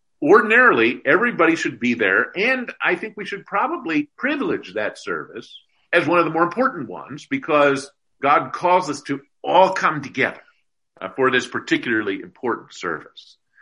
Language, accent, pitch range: English, American, 130-200 Hz